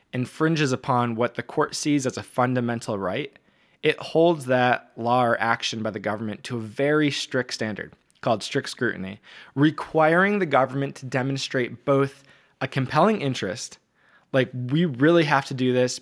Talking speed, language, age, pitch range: 160 wpm, English, 20-39, 120-150 Hz